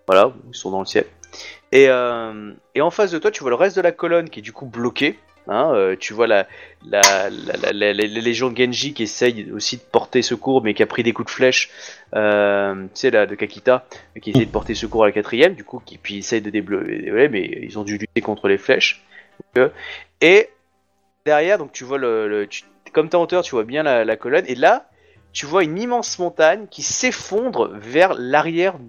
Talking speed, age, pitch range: 230 wpm, 20-39, 105-170 Hz